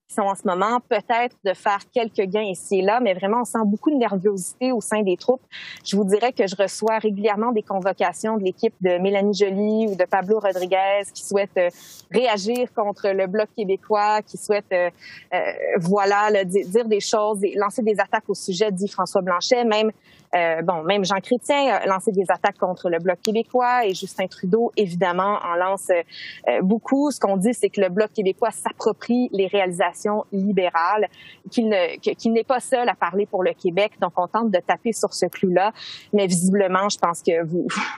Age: 30-49